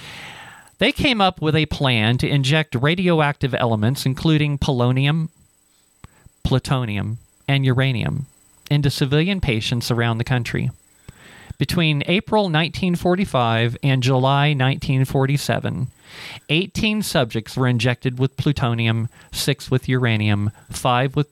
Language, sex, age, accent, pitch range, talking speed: English, male, 40-59, American, 120-155 Hz, 105 wpm